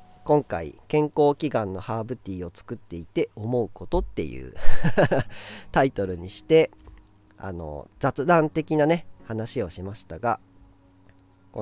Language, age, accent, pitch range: Japanese, 40-59, native, 100-150 Hz